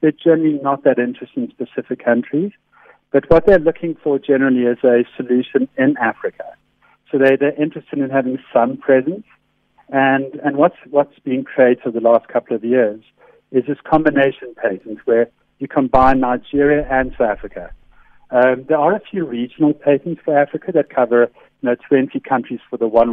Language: English